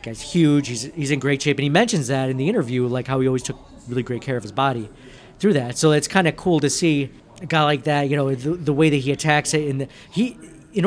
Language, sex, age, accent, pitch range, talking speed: English, male, 40-59, American, 135-165 Hz, 275 wpm